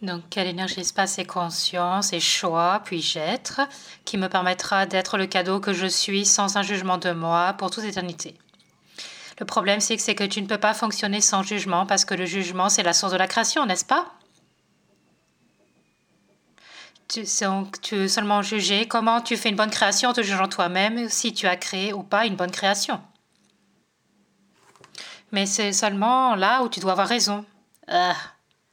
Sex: female